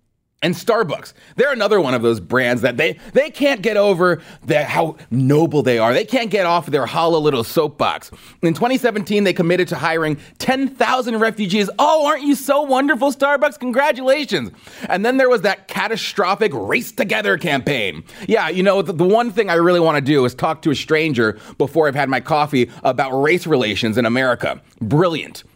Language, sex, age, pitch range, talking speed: English, male, 30-49, 135-225 Hz, 185 wpm